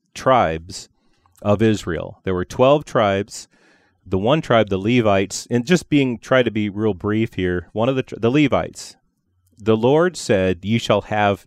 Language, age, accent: English, 30-49, American